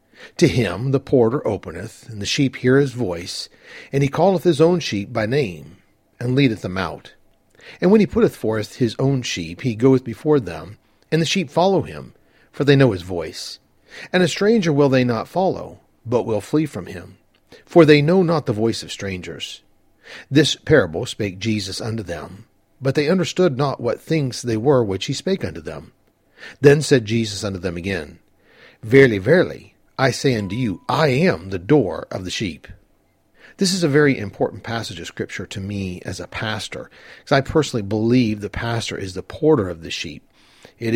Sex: male